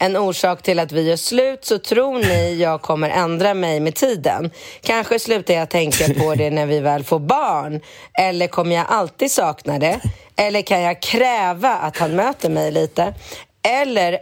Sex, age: female, 30-49